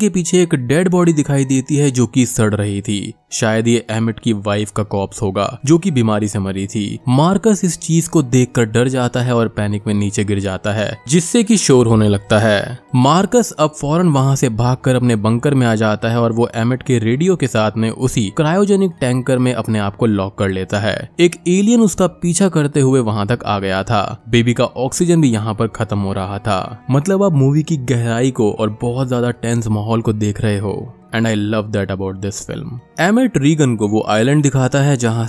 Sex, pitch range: male, 105-150 Hz